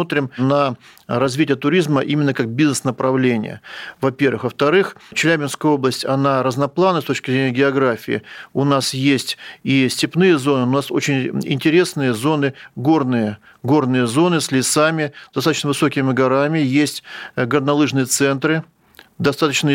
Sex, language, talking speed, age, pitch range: male, Russian, 120 wpm, 40-59, 125-145 Hz